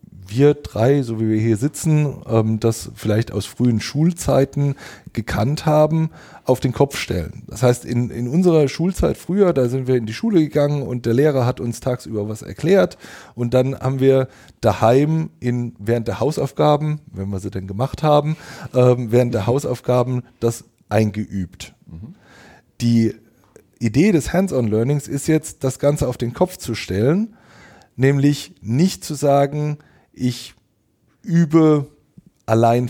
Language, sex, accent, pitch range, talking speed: English, male, German, 115-150 Hz, 145 wpm